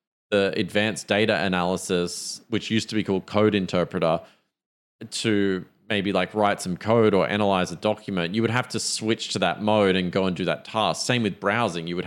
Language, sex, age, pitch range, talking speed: English, male, 30-49, 90-110 Hz, 200 wpm